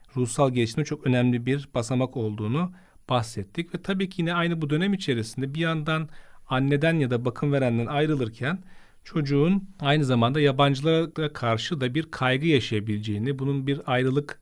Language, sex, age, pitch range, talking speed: Turkish, male, 40-59, 120-155 Hz, 150 wpm